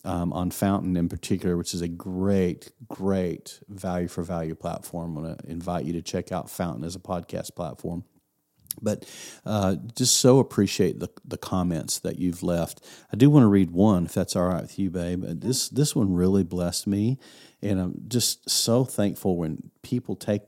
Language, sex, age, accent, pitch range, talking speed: English, male, 40-59, American, 90-110 Hz, 190 wpm